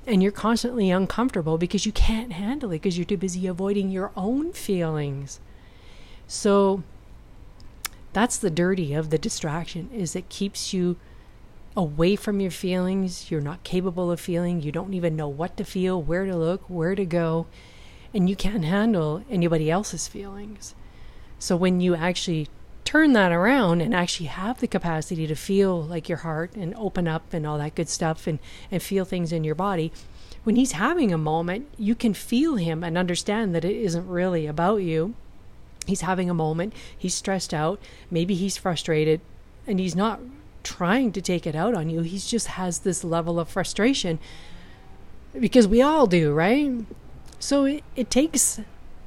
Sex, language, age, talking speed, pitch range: female, English, 40-59, 170 wpm, 165-205 Hz